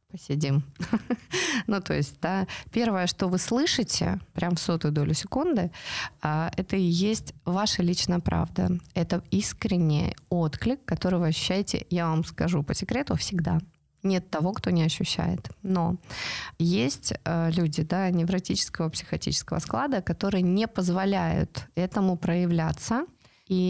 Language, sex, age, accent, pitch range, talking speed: Russian, female, 20-39, native, 165-195 Hz, 125 wpm